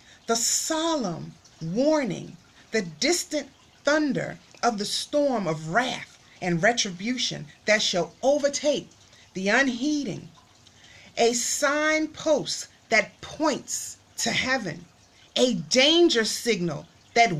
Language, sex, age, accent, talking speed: English, female, 40-59, American, 95 wpm